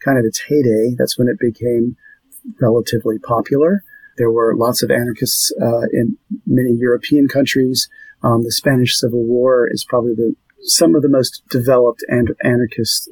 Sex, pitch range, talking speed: male, 115-135 Hz, 160 wpm